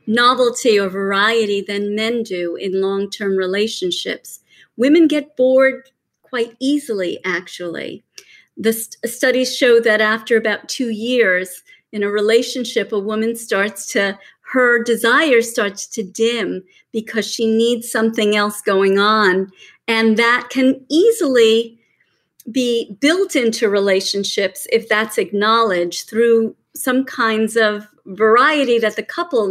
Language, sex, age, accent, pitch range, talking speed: English, female, 40-59, American, 205-255 Hz, 125 wpm